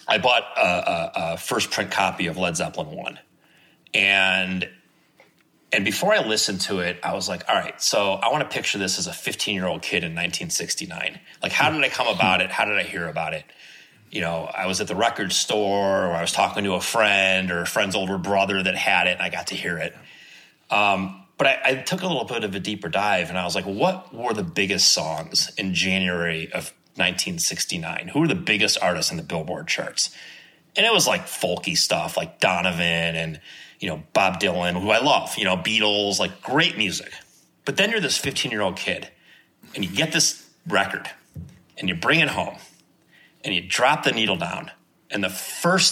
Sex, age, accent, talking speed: male, 30-49, American, 210 wpm